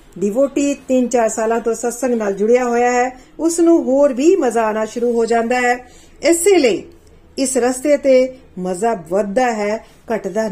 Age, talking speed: 40-59, 165 wpm